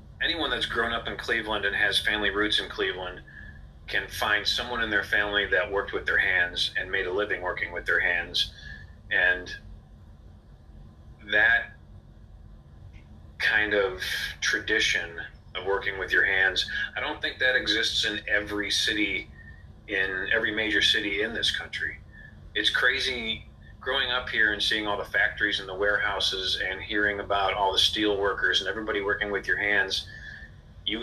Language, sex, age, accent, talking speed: English, male, 30-49, American, 160 wpm